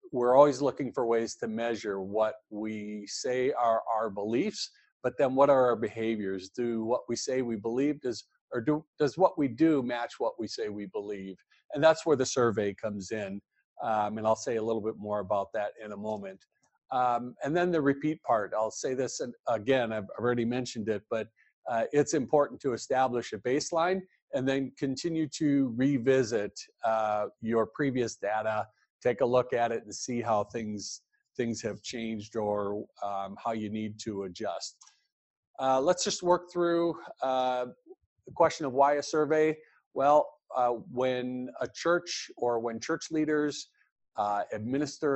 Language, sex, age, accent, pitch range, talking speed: English, male, 50-69, American, 110-140 Hz, 175 wpm